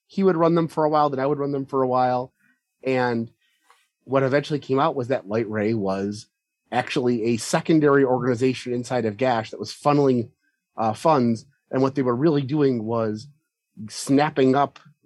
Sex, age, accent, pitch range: male, 30-49, American, 120-150 Hz